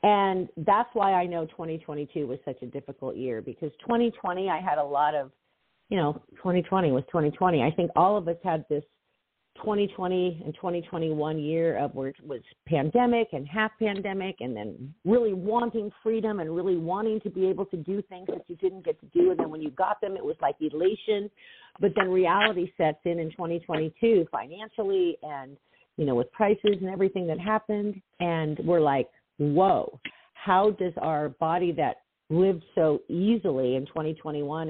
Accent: American